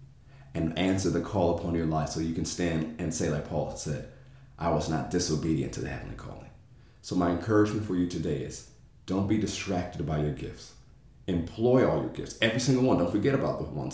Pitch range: 80-100 Hz